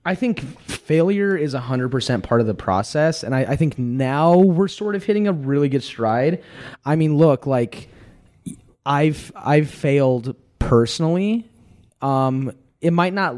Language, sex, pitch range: English, male, 110-140 Hz